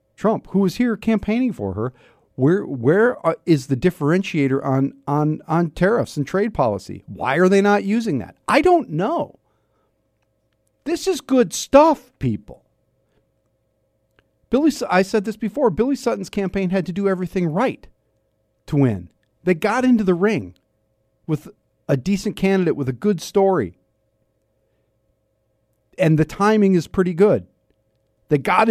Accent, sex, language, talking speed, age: American, male, English, 145 wpm, 50-69